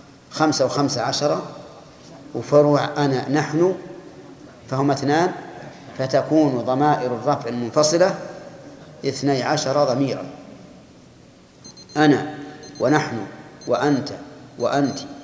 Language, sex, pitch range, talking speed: Arabic, male, 130-145 Hz, 80 wpm